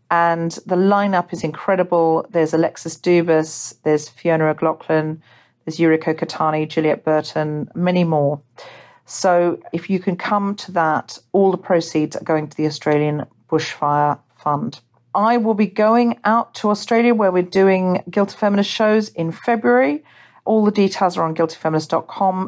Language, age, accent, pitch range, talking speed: English, 40-59, British, 155-195 Hz, 150 wpm